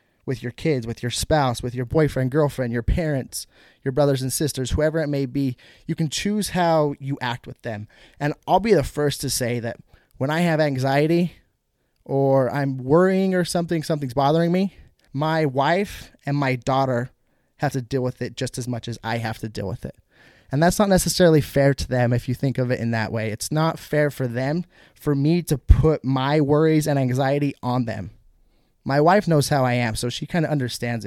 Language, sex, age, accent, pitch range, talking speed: English, male, 20-39, American, 125-160 Hz, 210 wpm